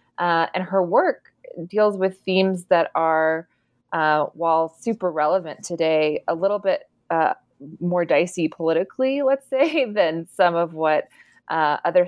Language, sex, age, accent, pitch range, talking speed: English, female, 20-39, American, 155-185 Hz, 145 wpm